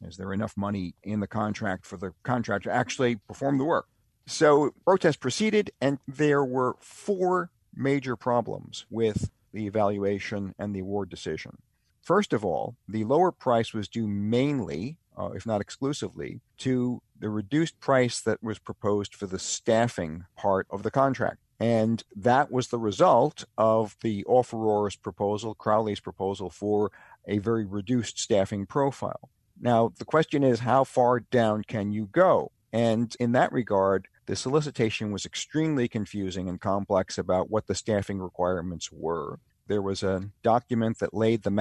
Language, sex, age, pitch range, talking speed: English, male, 50-69, 100-120 Hz, 155 wpm